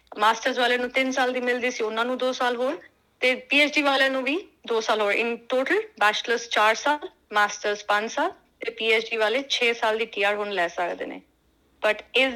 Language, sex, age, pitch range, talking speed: Punjabi, female, 30-49, 215-260 Hz, 205 wpm